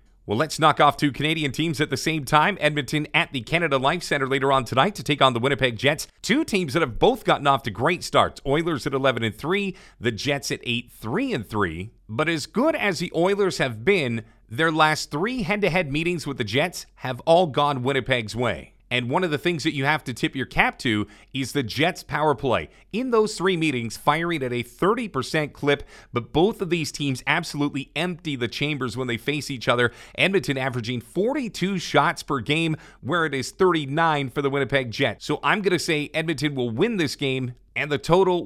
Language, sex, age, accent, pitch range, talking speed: English, male, 40-59, American, 125-160 Hz, 210 wpm